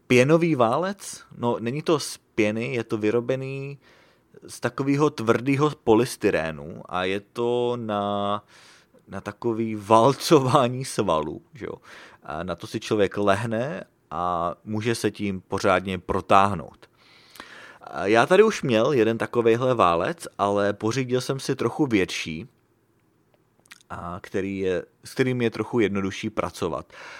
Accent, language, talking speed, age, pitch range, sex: Czech, English, 130 wpm, 30-49, 95-120 Hz, male